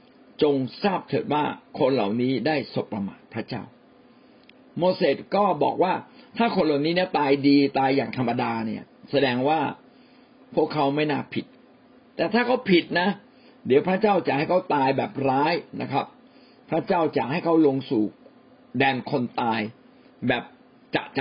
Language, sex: Thai, male